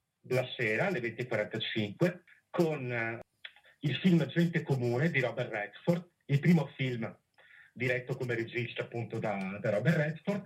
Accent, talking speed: native, 130 wpm